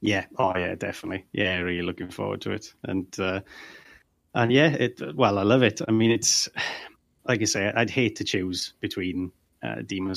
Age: 30-49